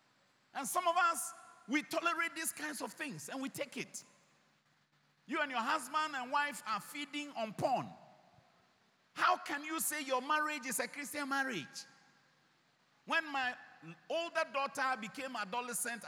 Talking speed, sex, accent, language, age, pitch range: 150 wpm, male, Nigerian, English, 50-69, 195-280 Hz